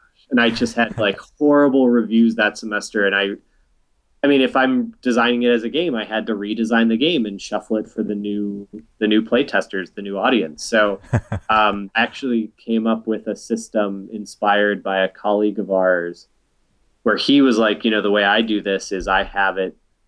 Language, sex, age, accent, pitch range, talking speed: English, male, 30-49, American, 100-115 Hz, 205 wpm